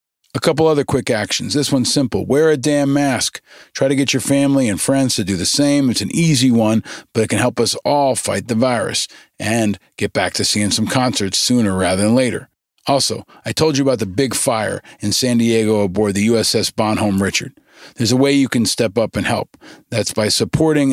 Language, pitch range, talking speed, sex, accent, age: English, 110-135 Hz, 215 wpm, male, American, 40-59